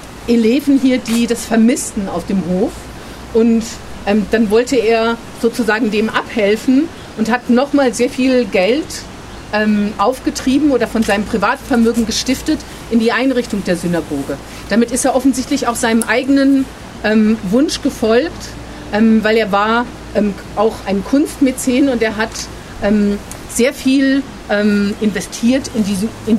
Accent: German